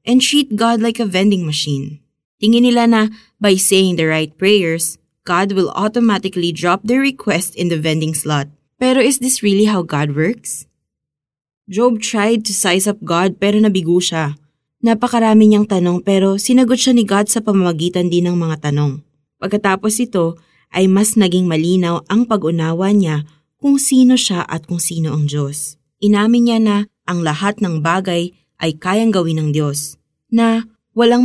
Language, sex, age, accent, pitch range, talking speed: Filipino, female, 20-39, native, 155-215 Hz, 165 wpm